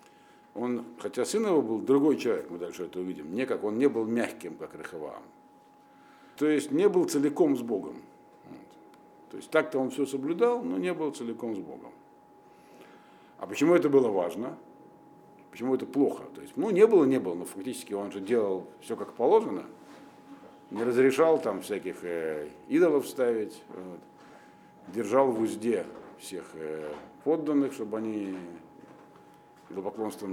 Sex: male